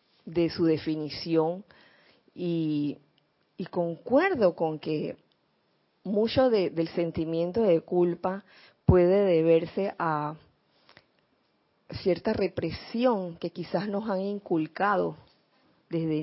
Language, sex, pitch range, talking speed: Spanish, female, 165-200 Hz, 90 wpm